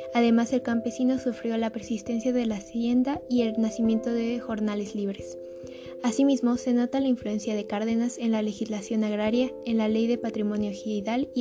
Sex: female